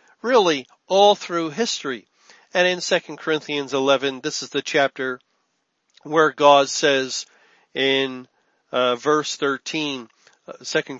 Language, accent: English, American